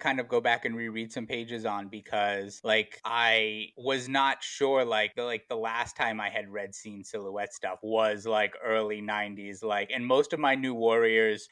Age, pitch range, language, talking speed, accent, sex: 20-39, 110-140 Hz, English, 200 wpm, American, male